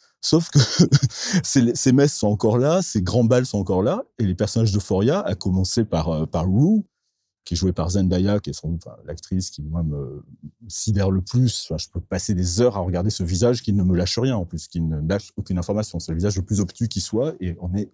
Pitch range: 90-120 Hz